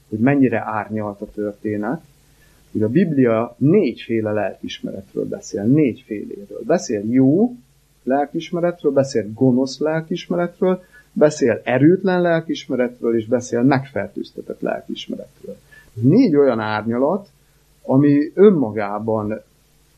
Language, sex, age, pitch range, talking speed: Hungarian, male, 30-49, 110-145 Hz, 90 wpm